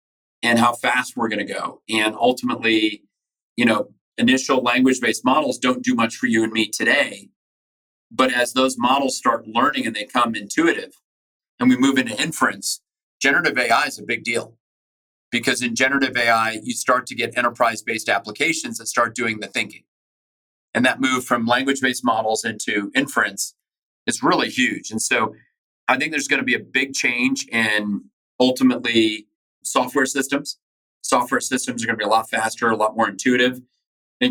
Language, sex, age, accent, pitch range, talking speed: English, male, 40-59, American, 115-140 Hz, 170 wpm